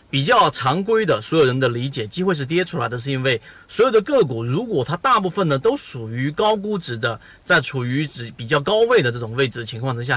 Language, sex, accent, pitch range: Chinese, male, native, 125-170 Hz